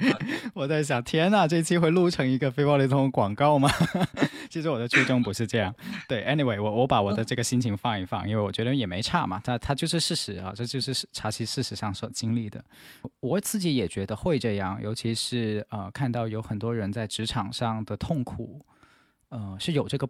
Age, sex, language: 20-39, male, Chinese